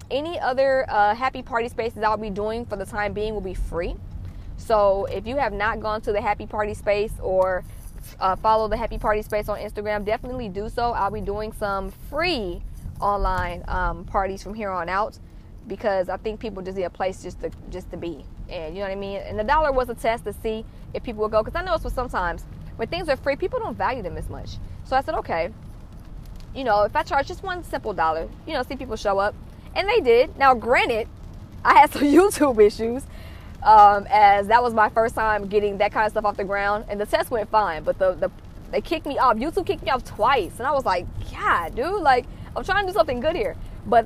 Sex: female